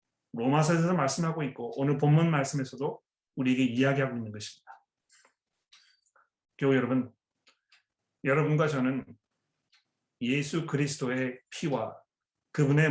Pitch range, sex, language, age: 140-175 Hz, male, Korean, 30-49